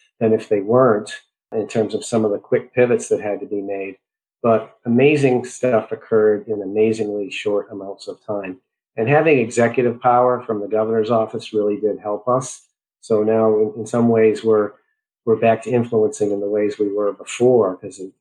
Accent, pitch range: American, 105-125 Hz